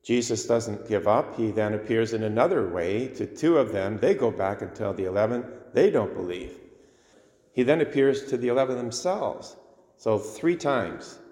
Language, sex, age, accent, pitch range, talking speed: English, male, 40-59, American, 95-125 Hz, 180 wpm